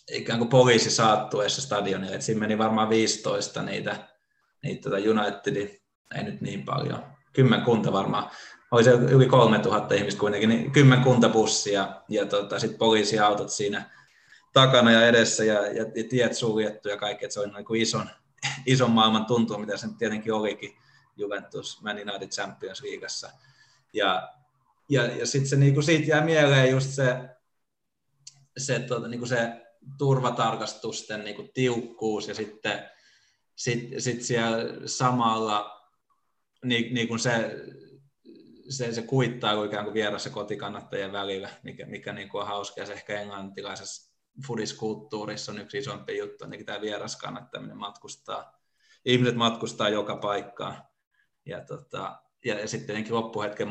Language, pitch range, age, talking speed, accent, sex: Finnish, 110-130 Hz, 20-39, 135 wpm, native, male